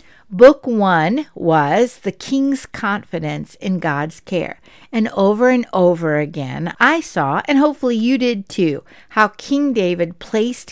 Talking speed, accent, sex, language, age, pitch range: 140 wpm, American, female, English, 60-79, 170-250 Hz